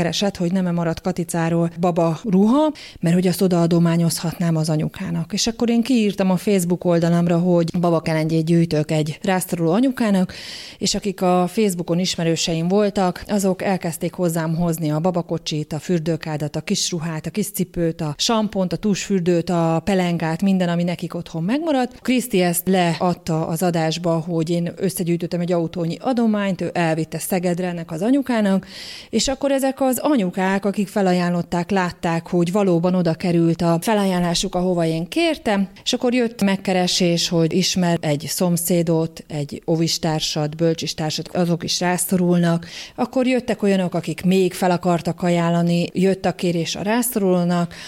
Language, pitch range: Hungarian, 170-195 Hz